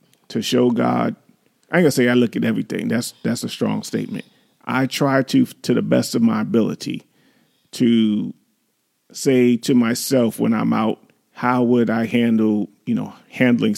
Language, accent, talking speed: English, American, 175 wpm